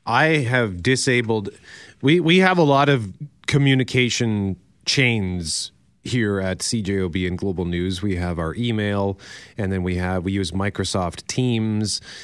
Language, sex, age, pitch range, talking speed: English, male, 30-49, 105-135 Hz, 140 wpm